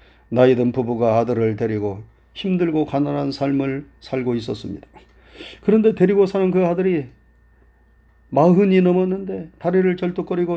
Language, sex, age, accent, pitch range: Korean, male, 40-59, native, 115-165 Hz